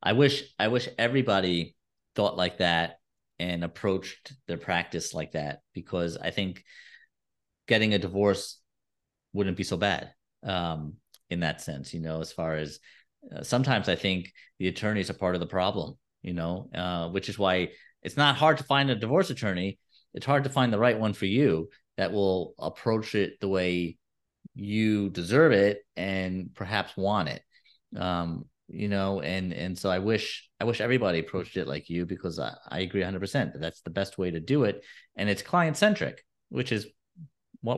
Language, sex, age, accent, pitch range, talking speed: English, male, 30-49, American, 90-110 Hz, 185 wpm